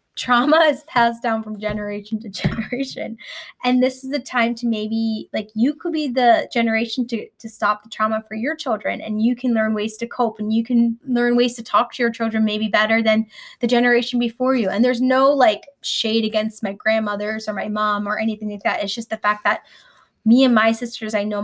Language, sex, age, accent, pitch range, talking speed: English, female, 10-29, American, 215-250 Hz, 220 wpm